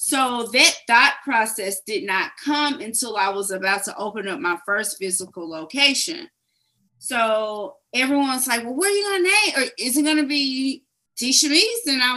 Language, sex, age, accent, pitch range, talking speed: English, female, 30-49, American, 215-295 Hz, 185 wpm